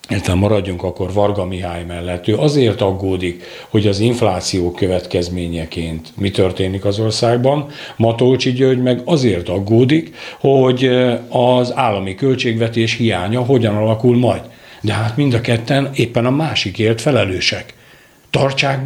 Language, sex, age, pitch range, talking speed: Hungarian, male, 60-79, 100-130 Hz, 125 wpm